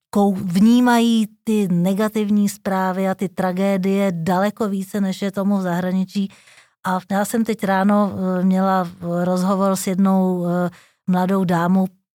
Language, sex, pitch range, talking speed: Czech, female, 190-215 Hz, 125 wpm